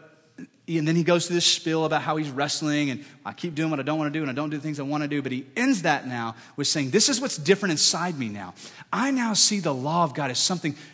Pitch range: 160-265 Hz